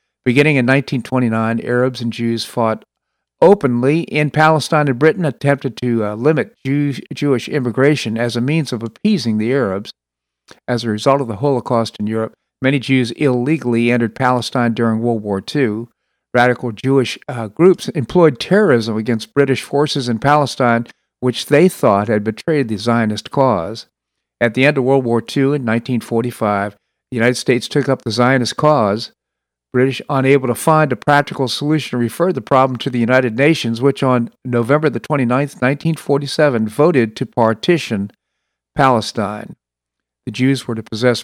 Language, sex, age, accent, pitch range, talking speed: English, male, 50-69, American, 115-140 Hz, 155 wpm